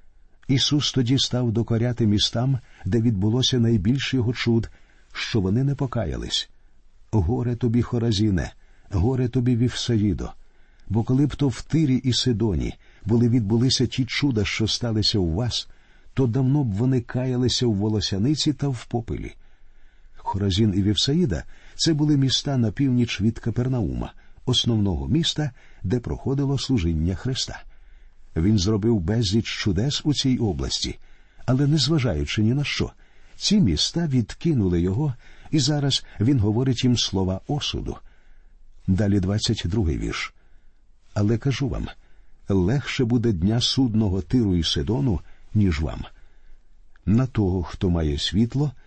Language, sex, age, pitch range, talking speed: Ukrainian, male, 50-69, 100-130 Hz, 130 wpm